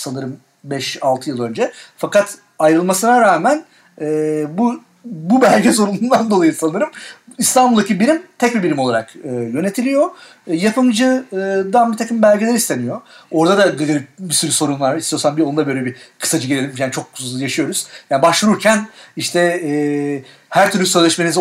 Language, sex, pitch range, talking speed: Turkish, male, 135-210 Hz, 145 wpm